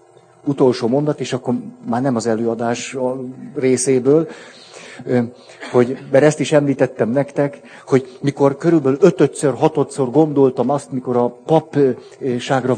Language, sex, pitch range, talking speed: Hungarian, male, 125-145 Hz, 120 wpm